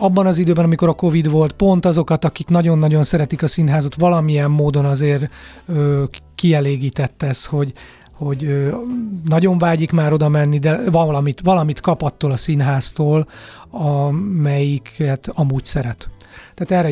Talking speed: 135 wpm